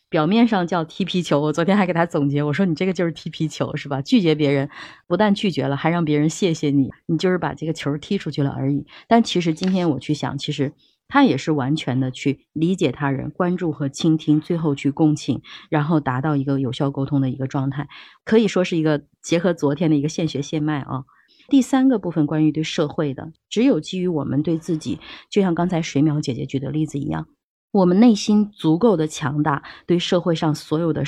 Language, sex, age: Chinese, female, 30-49